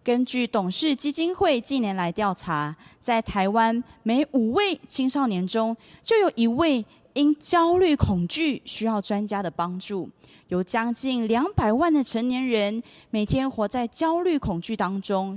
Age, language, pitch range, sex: 20-39, Chinese, 195-270 Hz, female